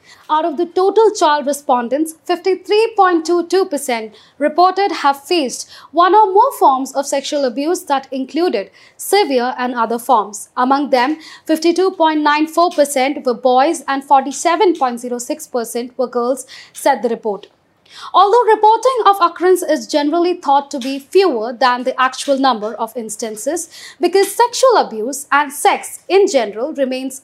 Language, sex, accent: English, female, Indian